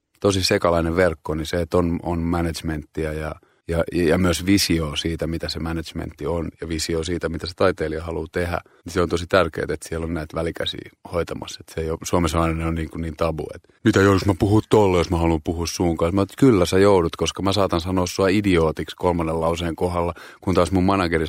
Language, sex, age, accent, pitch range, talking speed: Finnish, male, 30-49, native, 80-90 Hz, 210 wpm